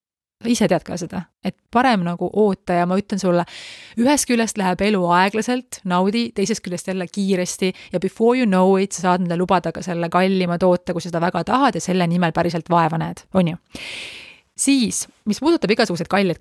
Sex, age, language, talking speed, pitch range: female, 30-49, English, 185 wpm, 175-215 Hz